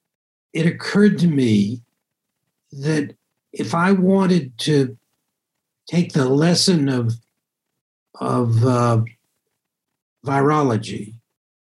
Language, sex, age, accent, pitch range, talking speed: English, male, 60-79, American, 120-165 Hz, 80 wpm